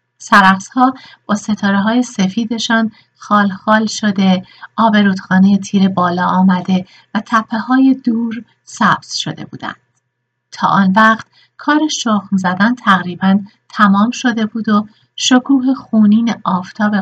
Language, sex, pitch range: Persian, female, 185-225 Hz